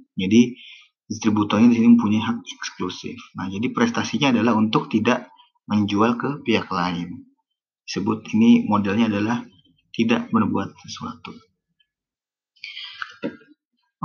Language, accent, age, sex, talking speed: Indonesian, native, 30-49, male, 105 wpm